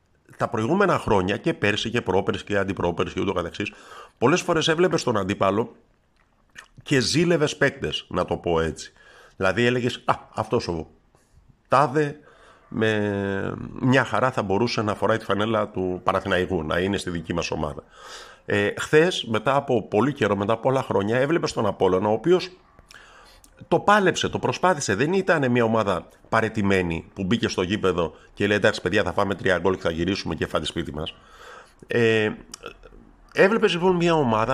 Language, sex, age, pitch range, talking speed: Greek, male, 50-69, 95-145 Hz, 160 wpm